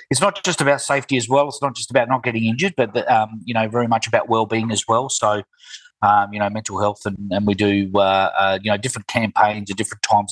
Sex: male